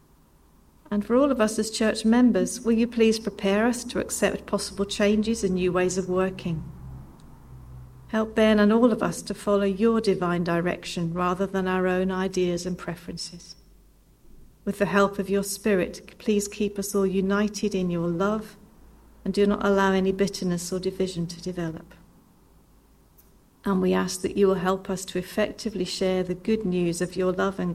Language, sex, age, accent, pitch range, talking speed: English, female, 40-59, British, 180-210 Hz, 175 wpm